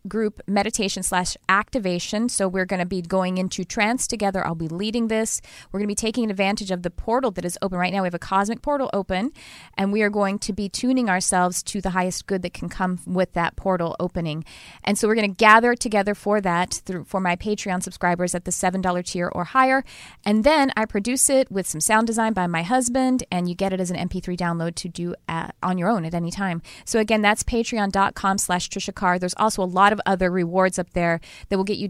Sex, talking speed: female, 230 wpm